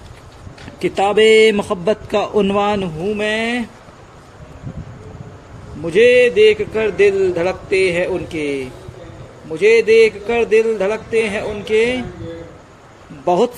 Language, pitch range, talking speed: Hindi, 175-210 Hz, 90 wpm